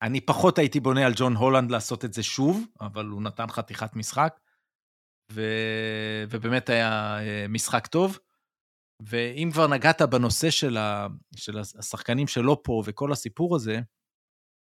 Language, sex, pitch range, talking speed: Hebrew, male, 110-145 Hz, 135 wpm